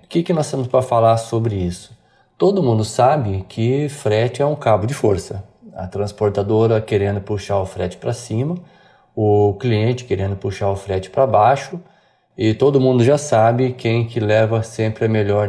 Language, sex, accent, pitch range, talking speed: Portuguese, male, Brazilian, 105-135 Hz, 175 wpm